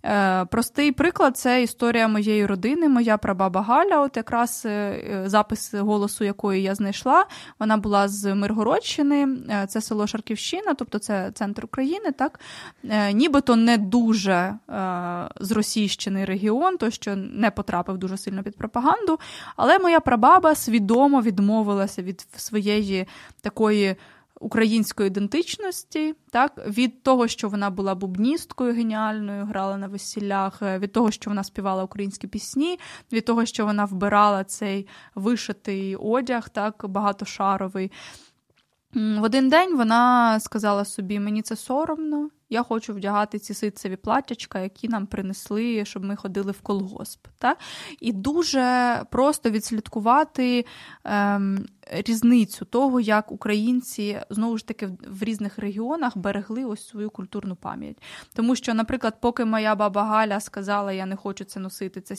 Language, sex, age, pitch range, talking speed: Ukrainian, female, 20-39, 200-240 Hz, 135 wpm